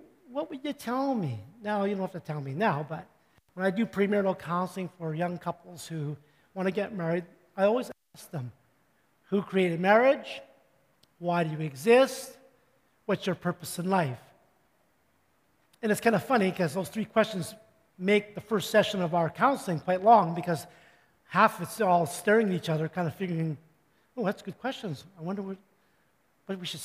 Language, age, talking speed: English, 50-69, 185 wpm